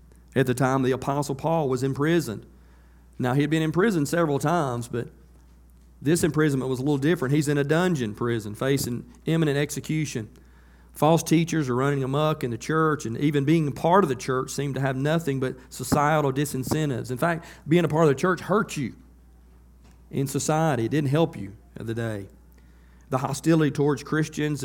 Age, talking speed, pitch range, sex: 40-59, 190 wpm, 115-150 Hz, male